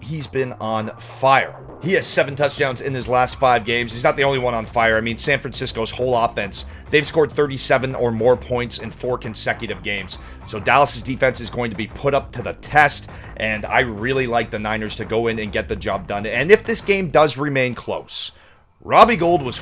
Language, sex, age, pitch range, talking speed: English, male, 30-49, 110-145 Hz, 220 wpm